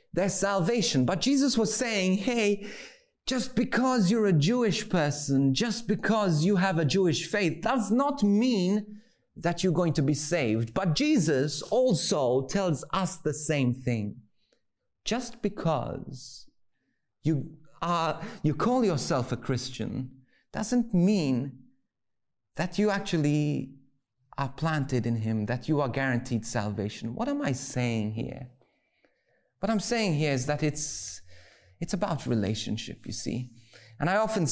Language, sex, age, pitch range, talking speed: English, male, 30-49, 125-200 Hz, 135 wpm